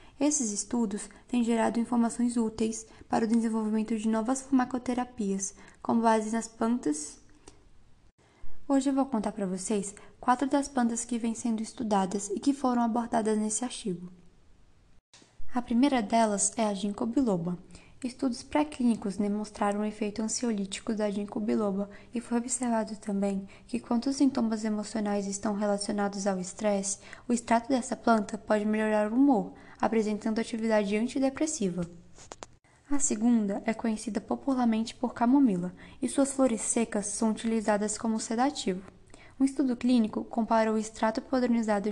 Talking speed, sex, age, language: 140 wpm, female, 10-29, Portuguese